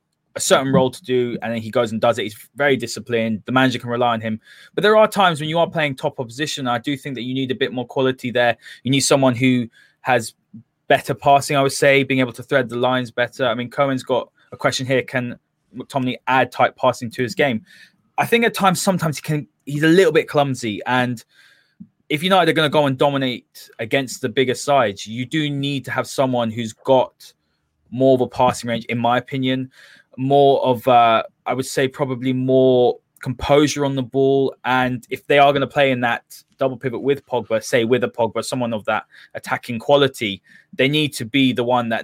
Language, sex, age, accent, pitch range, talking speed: English, male, 20-39, British, 120-140 Hz, 225 wpm